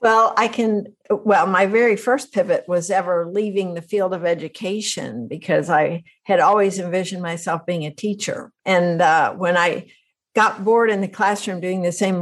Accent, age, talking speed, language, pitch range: American, 60-79, 175 wpm, English, 180-230 Hz